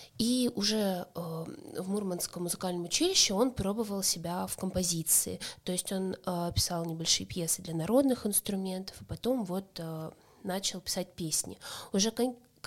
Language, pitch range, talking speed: Russian, 175-220 Hz, 130 wpm